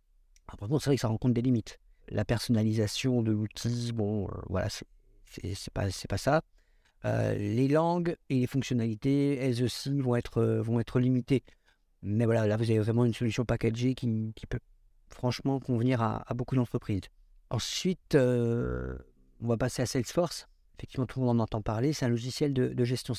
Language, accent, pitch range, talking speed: French, French, 115-145 Hz, 195 wpm